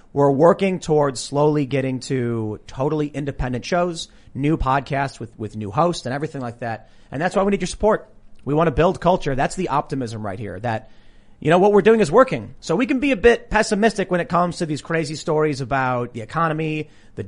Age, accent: 30-49, American